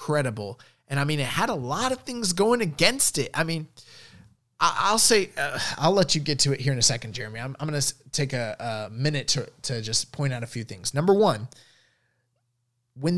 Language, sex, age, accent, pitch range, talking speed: English, male, 20-39, American, 120-160 Hz, 215 wpm